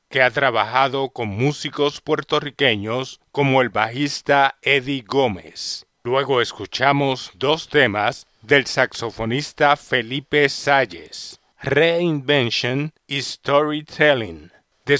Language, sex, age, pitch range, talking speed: English, male, 50-69, 125-145 Hz, 90 wpm